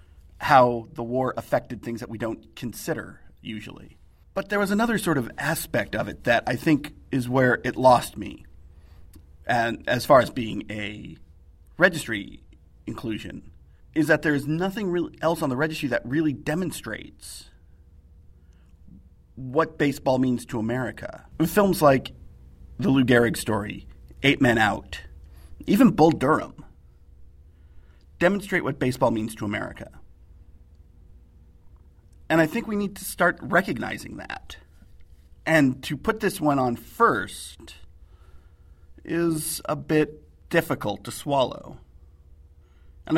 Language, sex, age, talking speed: English, male, 40-59, 130 wpm